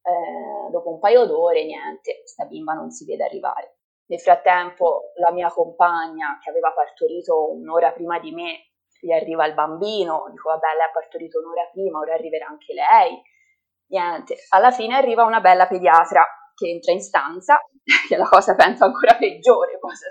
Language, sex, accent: Italian, female, native